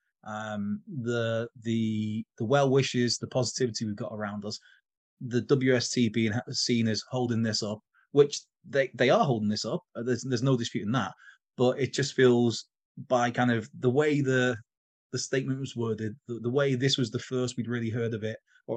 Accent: British